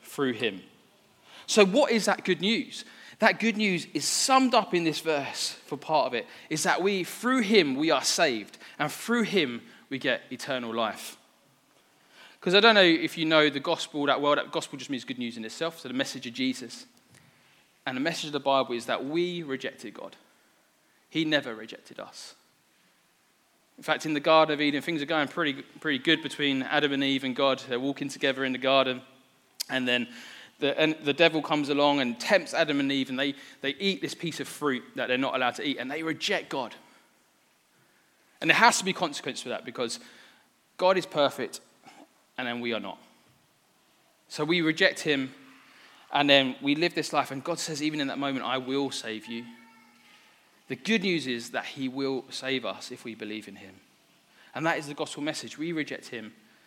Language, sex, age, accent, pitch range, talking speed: English, male, 20-39, British, 130-165 Hz, 200 wpm